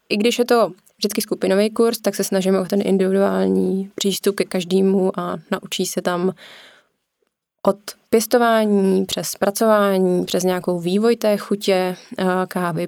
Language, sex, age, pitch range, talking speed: Slovak, female, 20-39, 180-195 Hz, 140 wpm